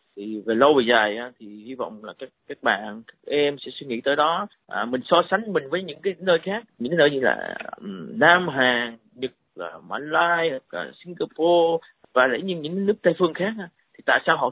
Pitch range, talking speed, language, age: 120-170 Hz, 220 wpm, Vietnamese, 20-39